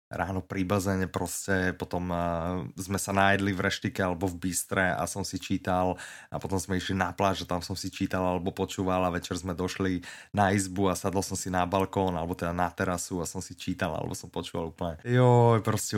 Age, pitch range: 20-39, 95-120 Hz